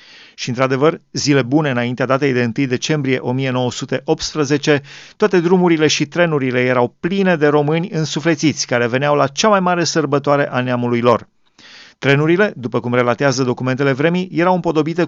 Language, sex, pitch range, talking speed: Romanian, male, 135-165 Hz, 145 wpm